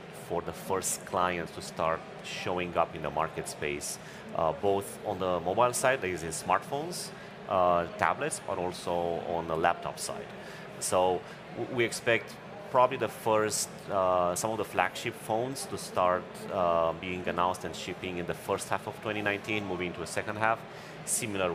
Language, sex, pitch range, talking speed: English, male, 90-110 Hz, 170 wpm